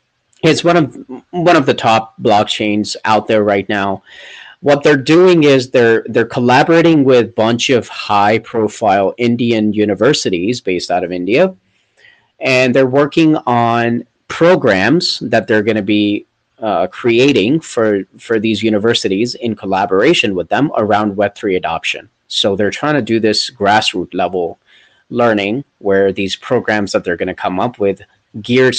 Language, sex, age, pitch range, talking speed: English, male, 30-49, 105-135 Hz, 150 wpm